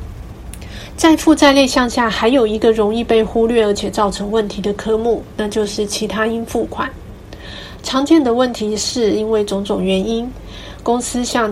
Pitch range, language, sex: 200-245 Hz, Chinese, female